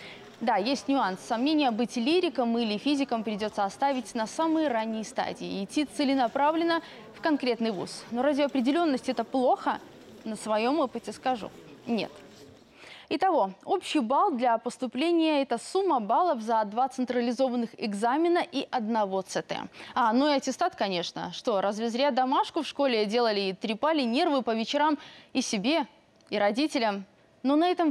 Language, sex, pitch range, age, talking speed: Russian, female, 225-300 Hz, 20-39, 150 wpm